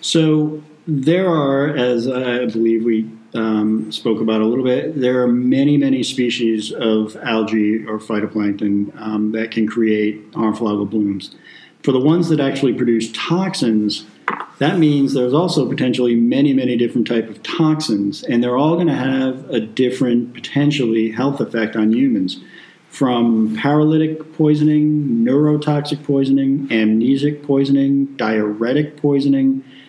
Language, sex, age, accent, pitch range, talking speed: English, male, 50-69, American, 110-135 Hz, 140 wpm